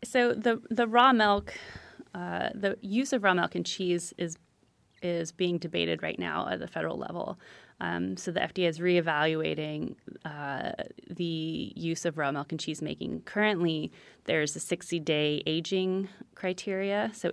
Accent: American